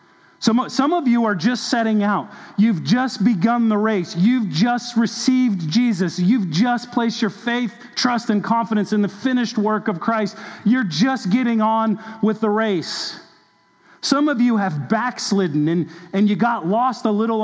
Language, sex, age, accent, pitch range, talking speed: English, male, 40-59, American, 200-250 Hz, 170 wpm